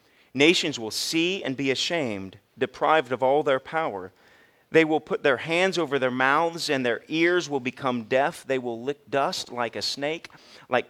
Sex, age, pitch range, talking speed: male, 40-59, 130-185 Hz, 180 wpm